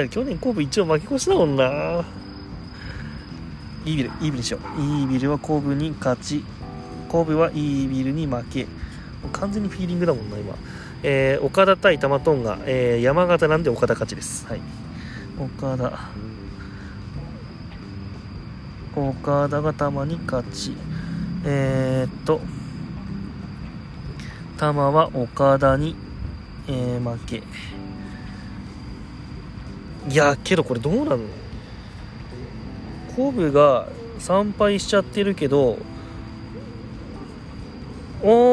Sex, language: male, Japanese